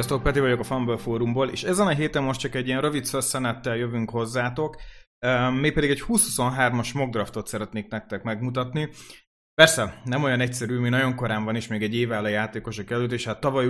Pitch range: 115-145 Hz